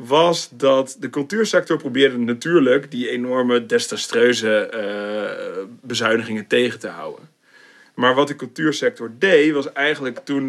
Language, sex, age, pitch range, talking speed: Dutch, male, 40-59, 115-160 Hz, 120 wpm